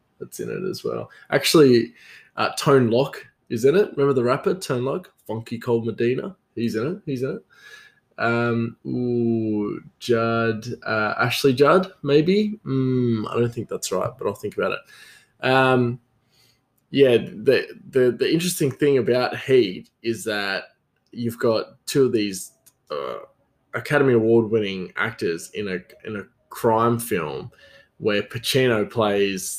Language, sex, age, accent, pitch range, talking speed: English, male, 20-39, Australian, 115-145 Hz, 150 wpm